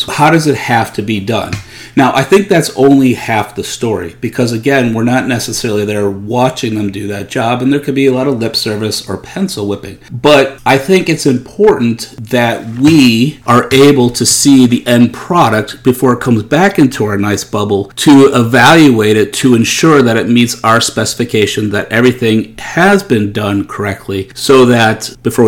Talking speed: 185 wpm